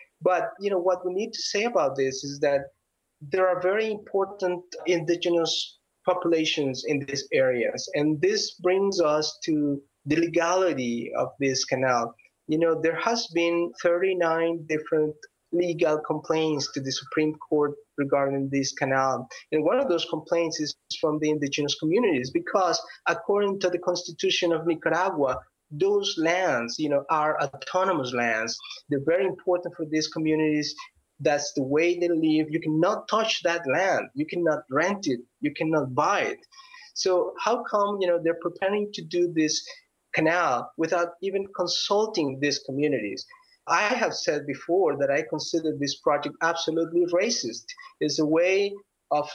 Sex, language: male, English